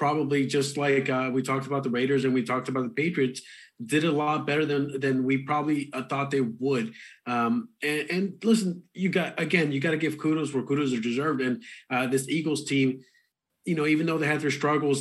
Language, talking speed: English, 220 wpm